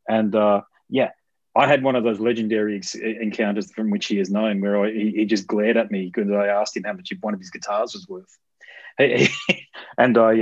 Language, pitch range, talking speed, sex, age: English, 105-125 Hz, 220 wpm, male, 30-49